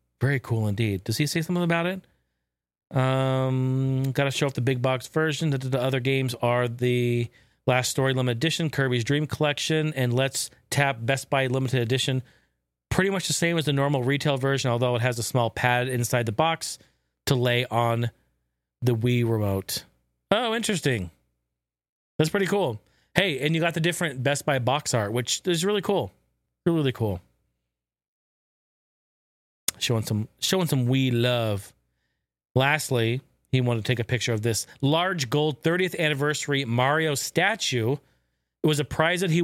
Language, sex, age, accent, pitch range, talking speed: English, male, 40-59, American, 115-155 Hz, 170 wpm